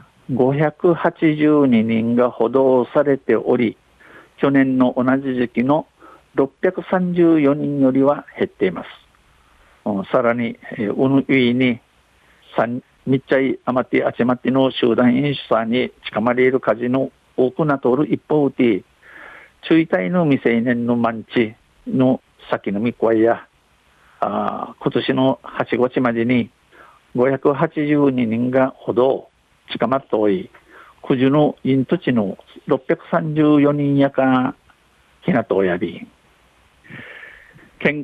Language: Japanese